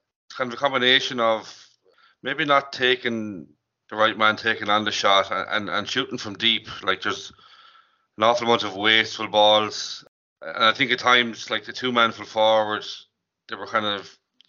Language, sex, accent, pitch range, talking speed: English, male, Irish, 105-120 Hz, 175 wpm